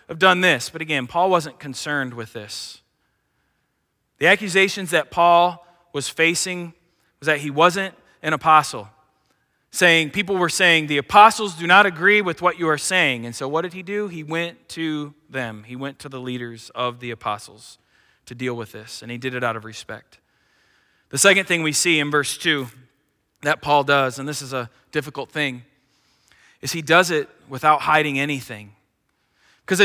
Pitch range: 145-210 Hz